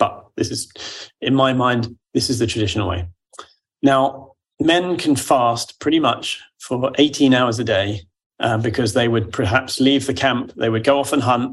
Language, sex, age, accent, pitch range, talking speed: English, male, 30-49, British, 110-135 Hz, 180 wpm